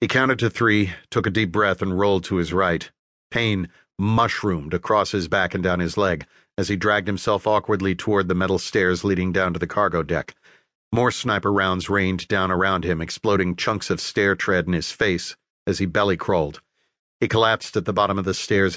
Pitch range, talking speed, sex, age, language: 95-110 Hz, 205 wpm, male, 40-59, English